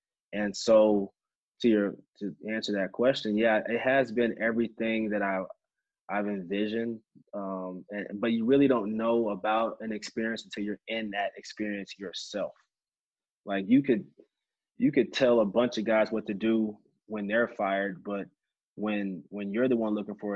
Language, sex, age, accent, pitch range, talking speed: English, male, 20-39, American, 100-115 Hz, 170 wpm